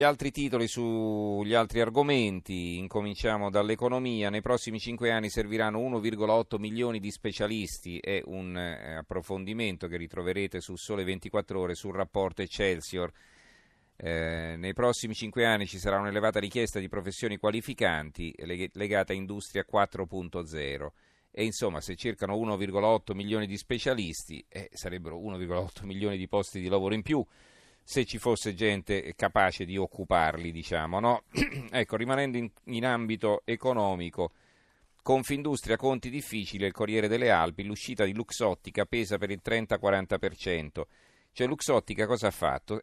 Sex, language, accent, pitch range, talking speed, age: male, Italian, native, 95-115 Hz, 135 wpm, 40-59